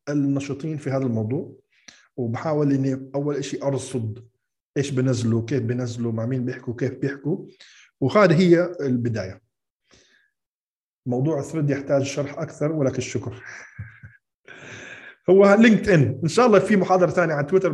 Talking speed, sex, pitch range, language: 130 wpm, male, 120-140 Hz, Arabic